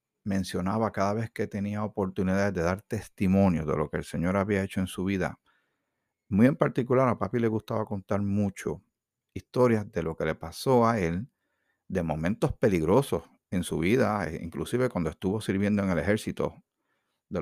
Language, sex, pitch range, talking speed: Spanish, male, 90-115 Hz, 170 wpm